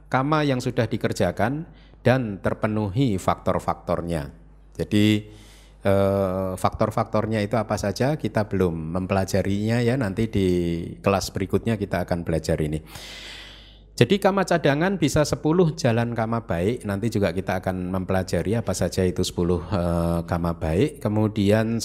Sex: male